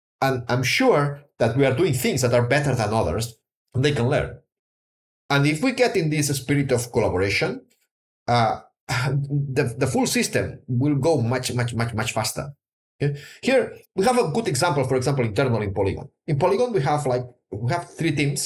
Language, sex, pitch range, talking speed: English, male, 120-160 Hz, 190 wpm